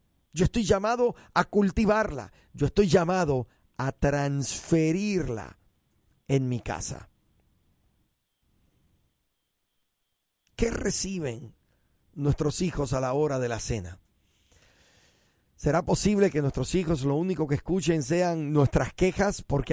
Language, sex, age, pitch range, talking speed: Spanish, male, 50-69, 125-200 Hz, 110 wpm